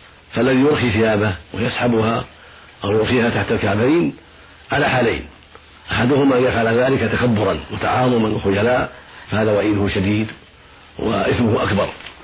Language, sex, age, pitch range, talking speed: Arabic, male, 50-69, 100-120 Hz, 105 wpm